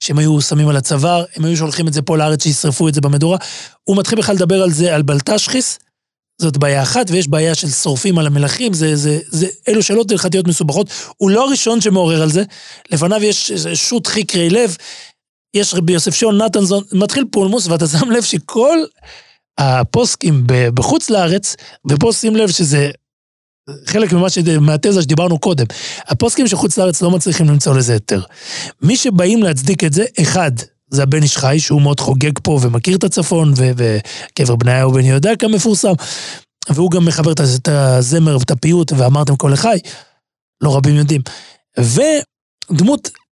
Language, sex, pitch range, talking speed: Hebrew, male, 145-195 Hz, 160 wpm